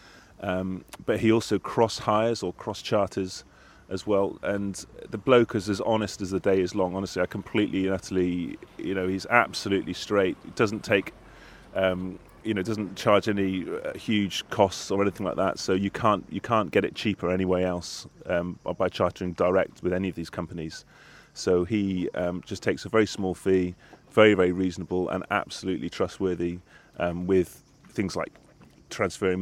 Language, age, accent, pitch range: English, 30-49, British, 90-105 Hz